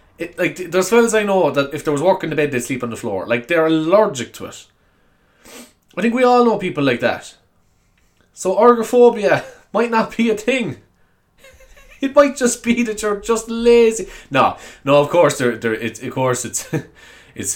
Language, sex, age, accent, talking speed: English, male, 20-39, Irish, 200 wpm